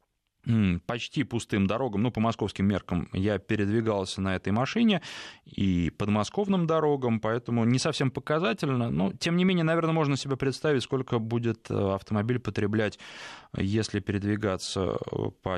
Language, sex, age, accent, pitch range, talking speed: Russian, male, 20-39, native, 105-140 Hz, 130 wpm